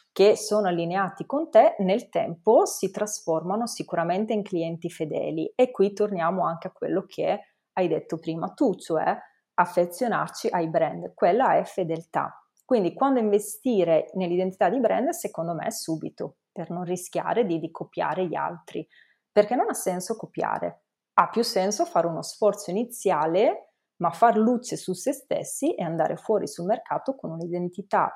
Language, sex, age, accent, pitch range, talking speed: Italian, female, 30-49, native, 170-215 Hz, 155 wpm